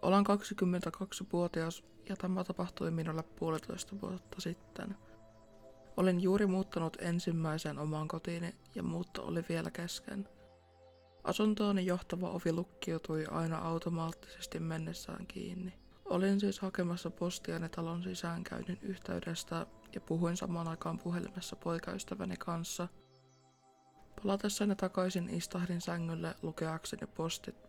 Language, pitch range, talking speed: Finnish, 155-190 Hz, 105 wpm